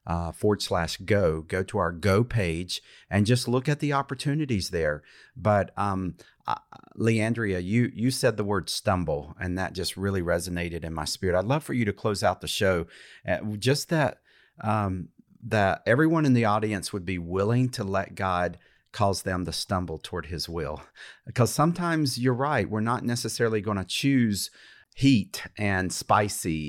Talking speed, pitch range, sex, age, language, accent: 175 wpm, 90-115 Hz, male, 50-69, English, American